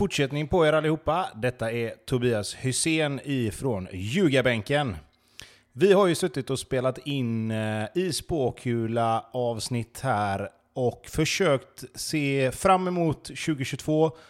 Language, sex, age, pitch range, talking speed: Swedish, male, 30-49, 115-145 Hz, 115 wpm